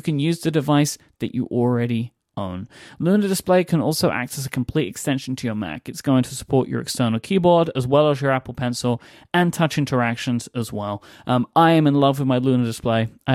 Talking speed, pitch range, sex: 215 wpm, 115-150 Hz, male